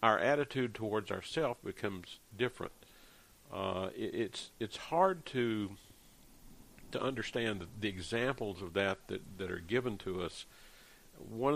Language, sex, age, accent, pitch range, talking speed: English, male, 60-79, American, 95-110 Hz, 135 wpm